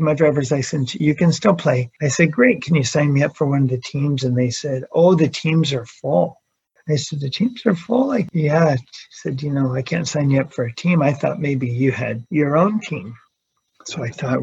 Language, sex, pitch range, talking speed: English, male, 135-170 Hz, 245 wpm